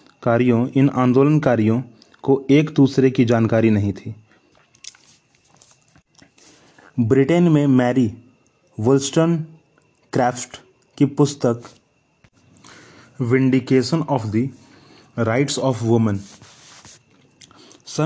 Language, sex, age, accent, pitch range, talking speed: Hindi, male, 30-49, native, 115-140 Hz, 80 wpm